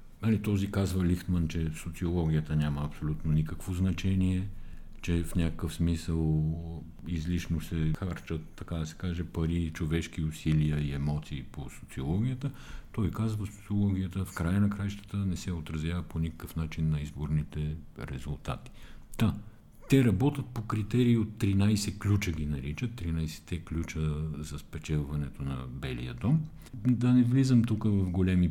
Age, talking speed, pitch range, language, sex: 50-69, 140 wpm, 75-105 Hz, Bulgarian, male